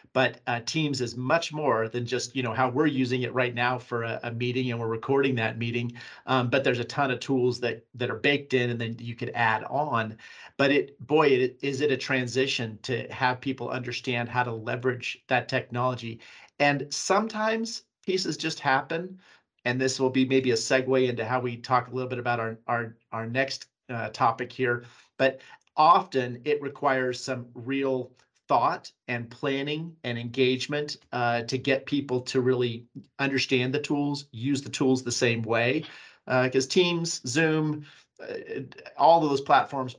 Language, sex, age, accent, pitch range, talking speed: English, male, 40-59, American, 120-140 Hz, 185 wpm